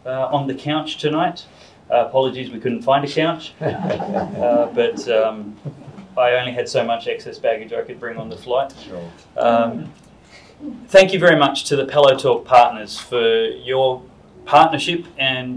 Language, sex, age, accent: English, male, 30-49, Australian